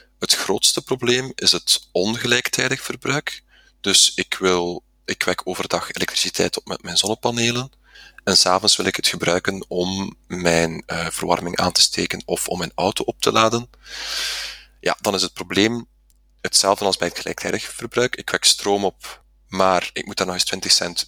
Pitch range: 90-115 Hz